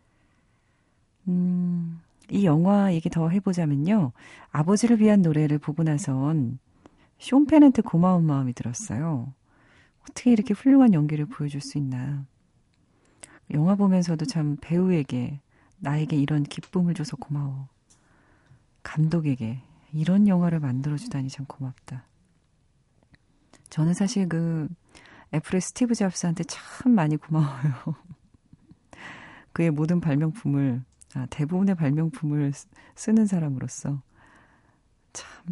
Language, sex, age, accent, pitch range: Korean, female, 40-59, native, 140-180 Hz